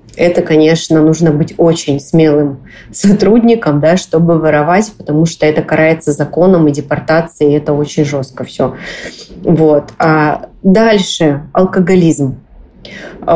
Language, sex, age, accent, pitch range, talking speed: Russian, female, 20-39, native, 165-220 Hz, 115 wpm